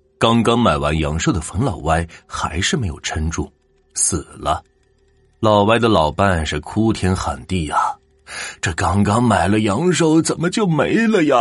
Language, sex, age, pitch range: Chinese, male, 30-49, 80-120 Hz